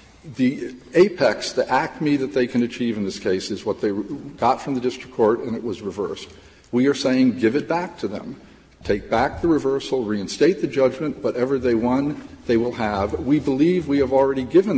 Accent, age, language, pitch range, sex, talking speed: American, 50-69, English, 110-165 Hz, male, 205 wpm